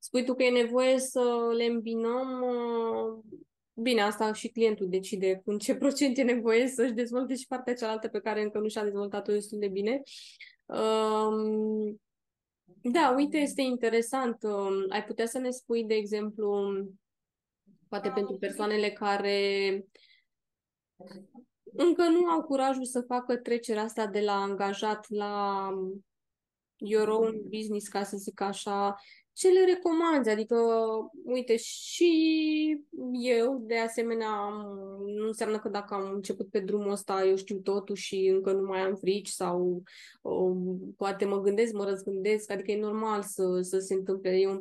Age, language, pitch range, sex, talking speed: 20-39, Romanian, 200-250 Hz, female, 145 wpm